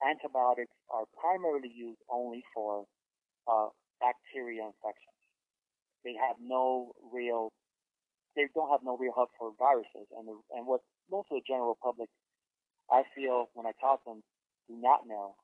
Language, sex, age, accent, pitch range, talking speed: English, male, 30-49, American, 110-130 Hz, 155 wpm